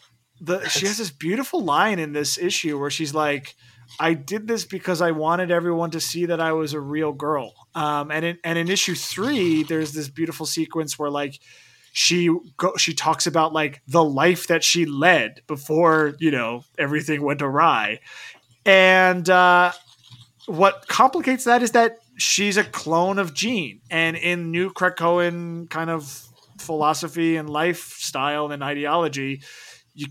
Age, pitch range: 20-39, 150-180 Hz